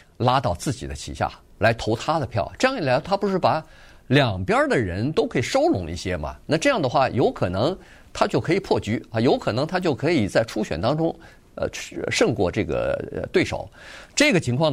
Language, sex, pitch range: Chinese, male, 100-150 Hz